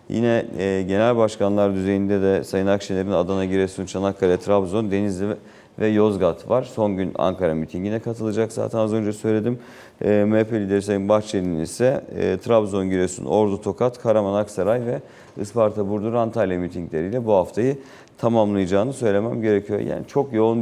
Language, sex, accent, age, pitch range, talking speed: Turkish, male, native, 40-59, 95-110 Hz, 150 wpm